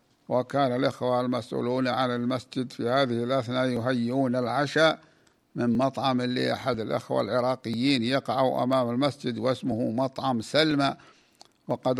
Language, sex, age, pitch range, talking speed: Arabic, male, 60-79, 120-140 Hz, 115 wpm